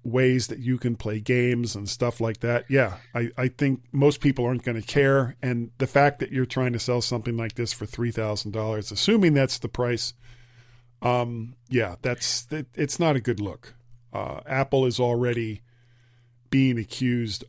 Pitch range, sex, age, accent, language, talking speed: 120-135 Hz, male, 40-59, American, English, 180 wpm